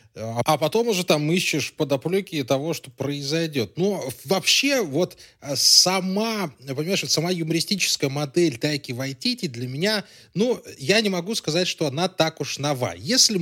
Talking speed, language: 145 wpm, Russian